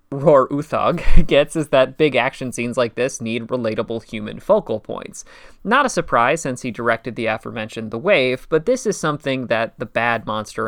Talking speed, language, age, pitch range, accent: 185 wpm, English, 20-39, 120-160 Hz, American